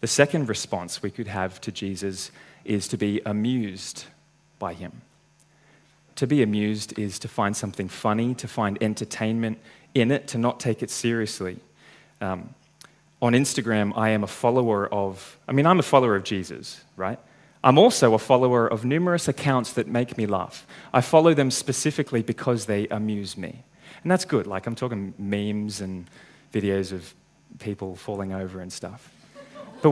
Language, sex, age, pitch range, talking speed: English, male, 20-39, 105-140 Hz, 165 wpm